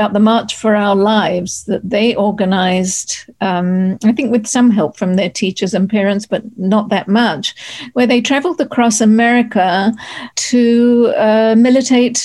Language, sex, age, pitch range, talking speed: English, female, 50-69, 195-240 Hz, 150 wpm